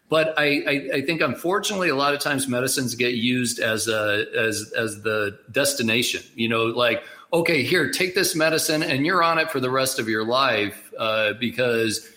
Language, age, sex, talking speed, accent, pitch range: English, 50-69, male, 190 wpm, American, 120-150 Hz